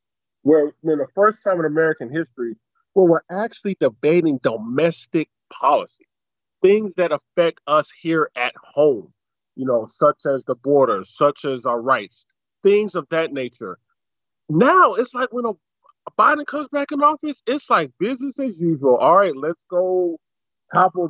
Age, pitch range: 30-49, 150-210 Hz